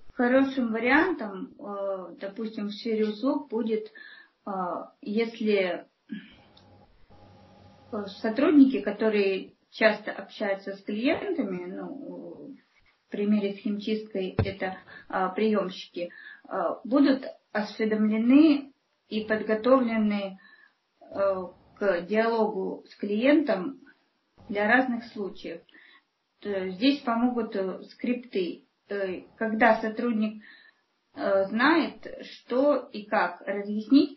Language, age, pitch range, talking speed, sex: Russian, 30-49, 195-260 Hz, 75 wpm, female